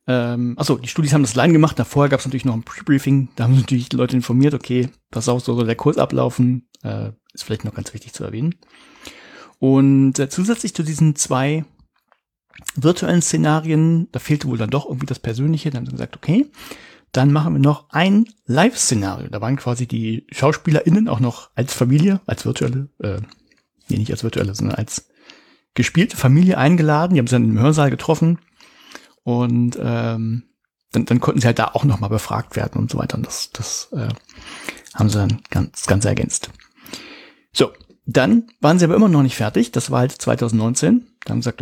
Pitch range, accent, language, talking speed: 120-155 Hz, German, German, 195 wpm